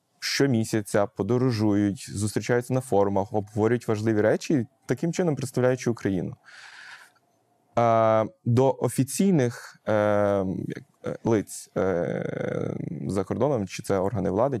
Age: 20-39